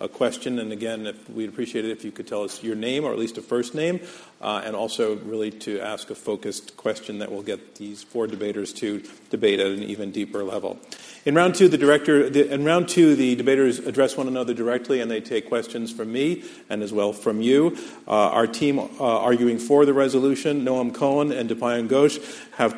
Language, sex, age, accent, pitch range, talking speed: English, male, 50-69, American, 115-140 Hz, 220 wpm